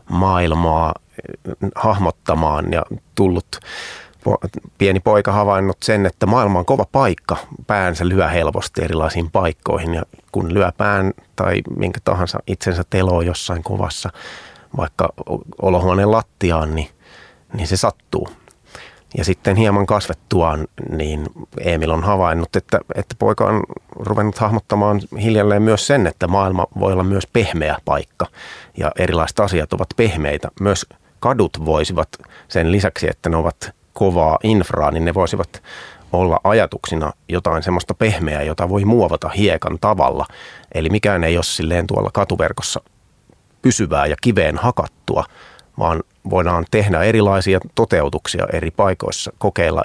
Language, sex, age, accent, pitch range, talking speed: Finnish, male, 30-49, native, 85-105 Hz, 130 wpm